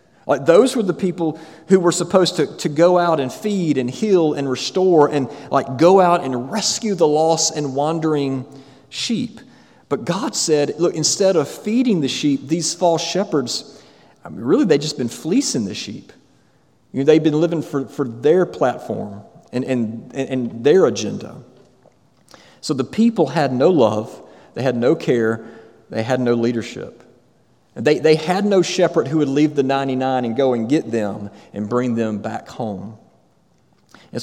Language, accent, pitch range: English, American, 130-170 Hz